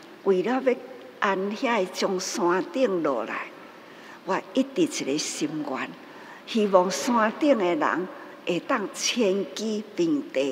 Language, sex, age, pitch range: Chinese, female, 60-79, 195-295 Hz